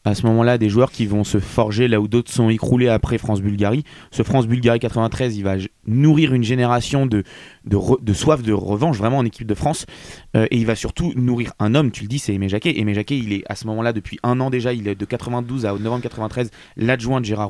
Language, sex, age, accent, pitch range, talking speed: French, male, 20-39, French, 105-125 Hz, 245 wpm